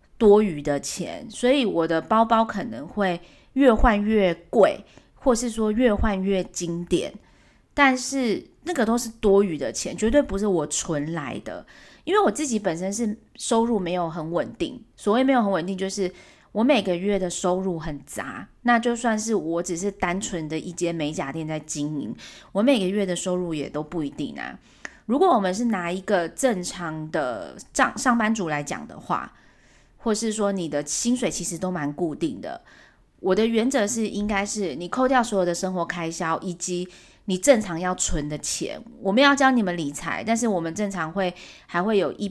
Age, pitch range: 30-49, 170-230 Hz